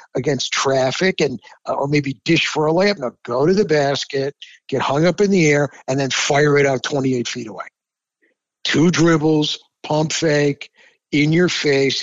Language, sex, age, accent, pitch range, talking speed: English, male, 60-79, American, 150-215 Hz, 180 wpm